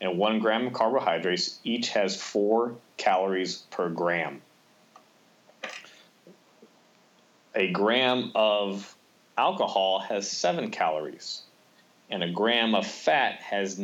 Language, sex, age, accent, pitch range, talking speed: English, male, 30-49, American, 100-115 Hz, 105 wpm